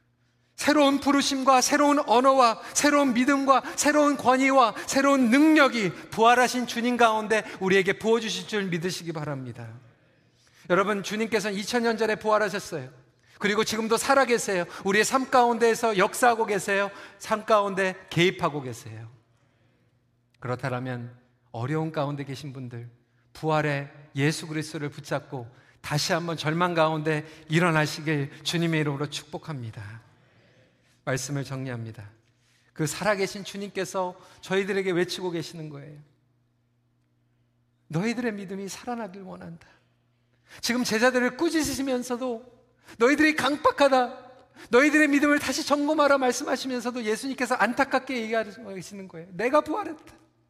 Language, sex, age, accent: Korean, male, 40-59, native